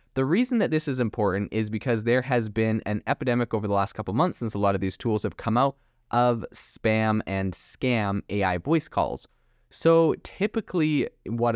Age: 20-39